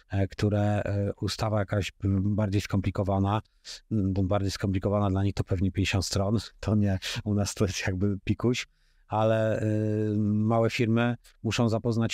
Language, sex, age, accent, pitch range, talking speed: Polish, male, 30-49, native, 95-115 Hz, 135 wpm